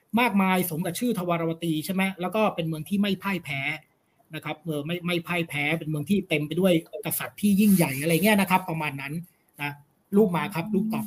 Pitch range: 165-215 Hz